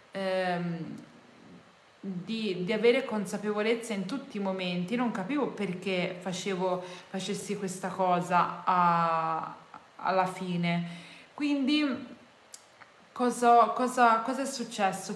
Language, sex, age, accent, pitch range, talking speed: Italian, female, 20-39, native, 190-240 Hz, 85 wpm